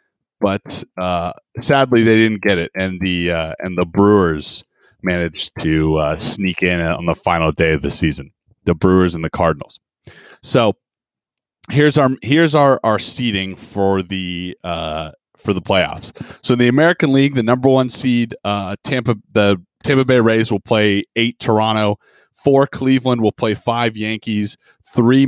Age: 30-49